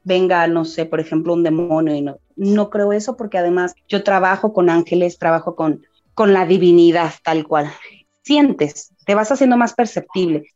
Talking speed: 175 wpm